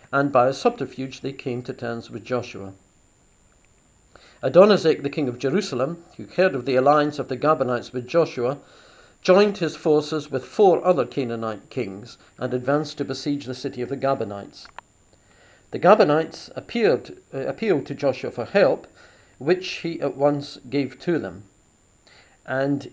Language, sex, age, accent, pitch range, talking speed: English, male, 50-69, British, 125-155 Hz, 150 wpm